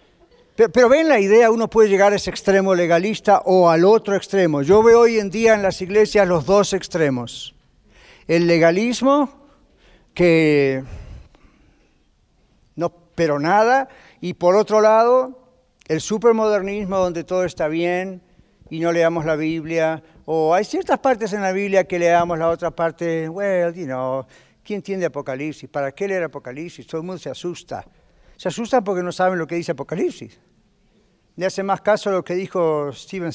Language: Spanish